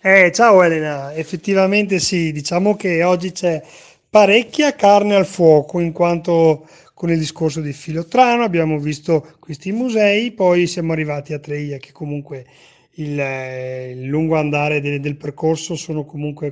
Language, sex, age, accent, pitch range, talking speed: Italian, male, 30-49, native, 150-180 Hz, 150 wpm